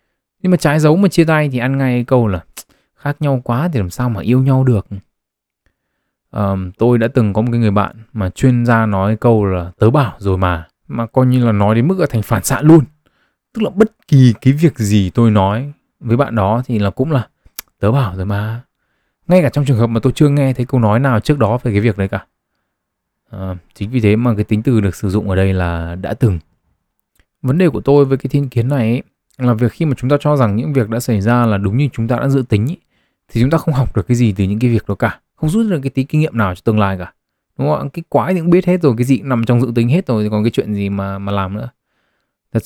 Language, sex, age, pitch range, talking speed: Vietnamese, male, 20-39, 105-135 Hz, 275 wpm